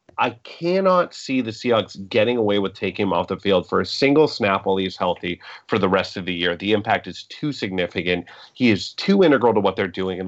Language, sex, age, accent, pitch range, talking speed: English, male, 30-49, American, 100-150 Hz, 235 wpm